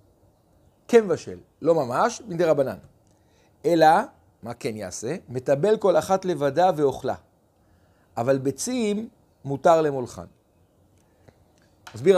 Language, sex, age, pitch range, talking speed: Hebrew, male, 50-69, 115-185 Hz, 100 wpm